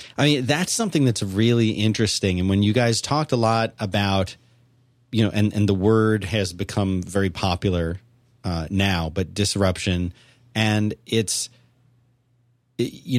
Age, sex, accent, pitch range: 30-49, male, American, 100-125 Hz